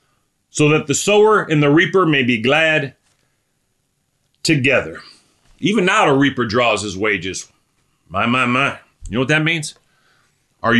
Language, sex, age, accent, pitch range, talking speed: English, male, 40-59, American, 125-160 Hz, 150 wpm